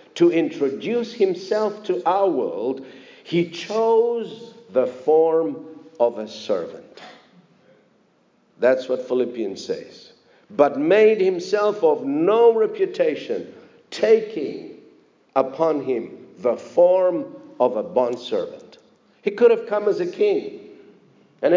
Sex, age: male, 50-69